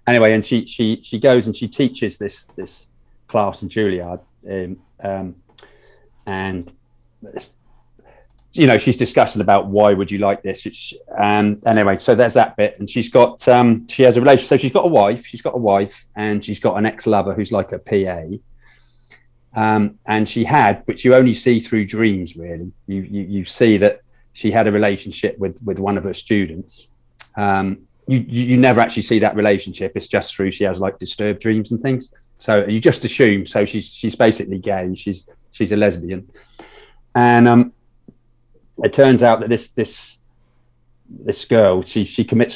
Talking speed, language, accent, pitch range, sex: 185 wpm, English, British, 100-120 Hz, male